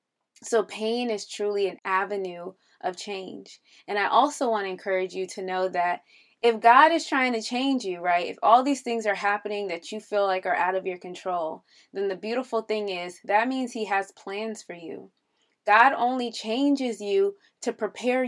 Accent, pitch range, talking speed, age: American, 190-230 Hz, 195 wpm, 20-39